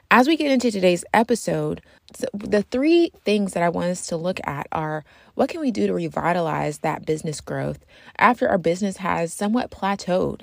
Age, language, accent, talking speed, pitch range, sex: 30-49, English, American, 185 wpm, 170-225 Hz, female